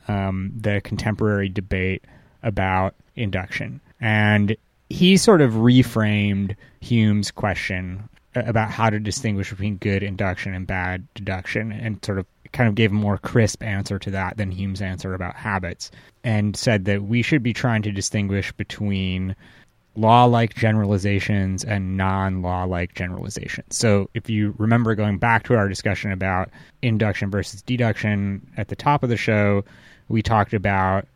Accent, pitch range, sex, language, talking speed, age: American, 95-110 Hz, male, English, 150 wpm, 30-49